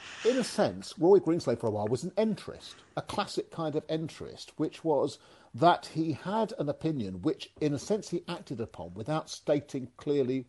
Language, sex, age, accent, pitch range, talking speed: English, male, 50-69, British, 110-155 Hz, 190 wpm